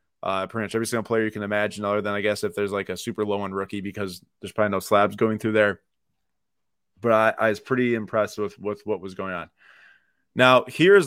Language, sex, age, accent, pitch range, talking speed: English, male, 20-39, American, 110-135 Hz, 235 wpm